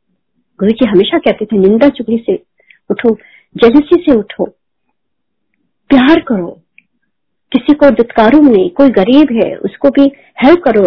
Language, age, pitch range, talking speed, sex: Hindi, 50-69, 210-280 Hz, 130 wpm, female